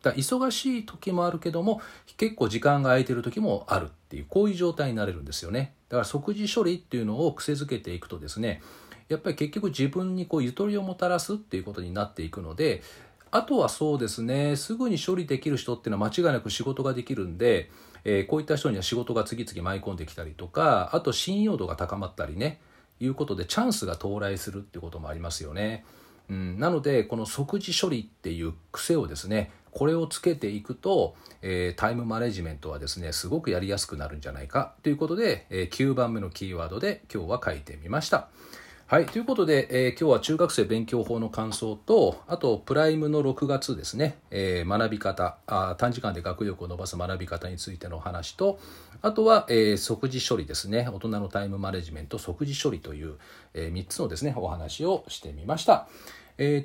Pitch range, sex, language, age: 90-145 Hz, male, Japanese, 40-59